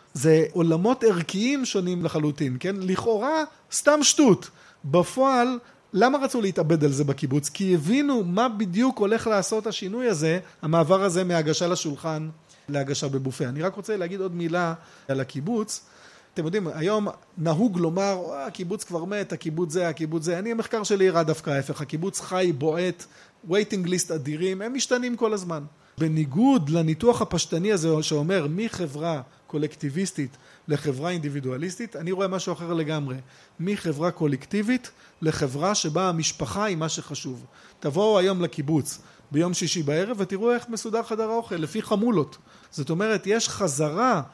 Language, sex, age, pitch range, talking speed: Hebrew, male, 30-49, 155-215 Hz, 140 wpm